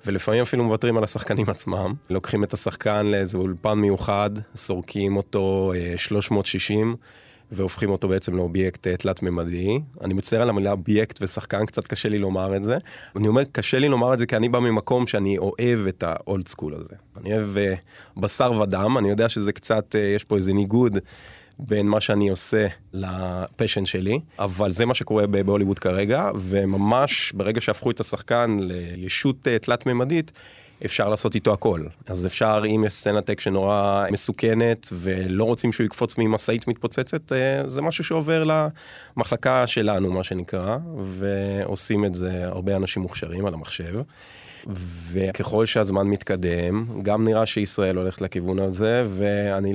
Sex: male